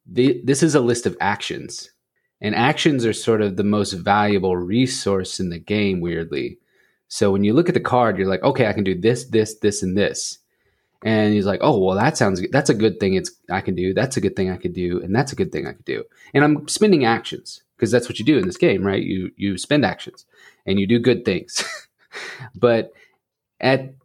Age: 30-49